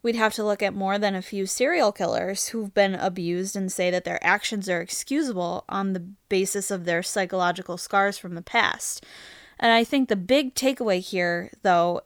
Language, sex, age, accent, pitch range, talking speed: English, female, 10-29, American, 190-240 Hz, 195 wpm